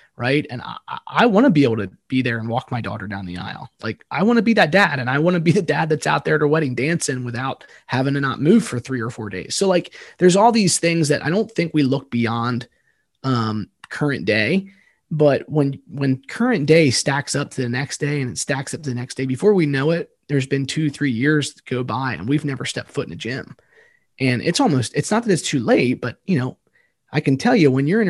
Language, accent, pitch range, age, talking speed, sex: English, American, 130-165 Hz, 20-39, 265 wpm, male